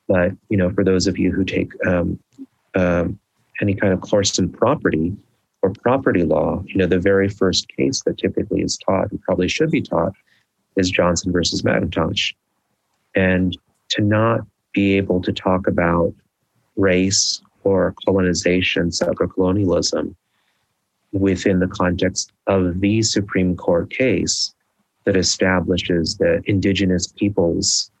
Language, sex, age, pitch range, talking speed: English, male, 30-49, 90-100 Hz, 140 wpm